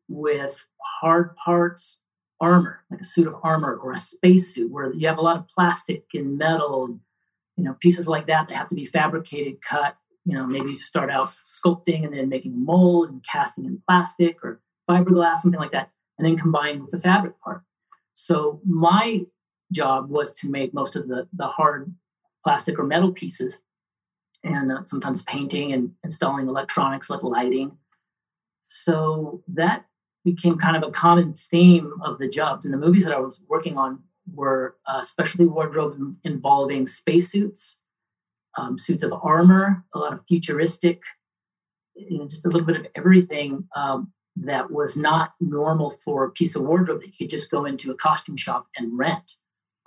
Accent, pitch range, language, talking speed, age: American, 140-175 Hz, English, 175 wpm, 40-59